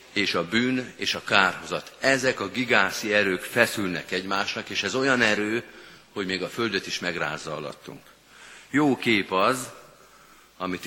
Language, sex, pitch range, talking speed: Hungarian, male, 90-120 Hz, 150 wpm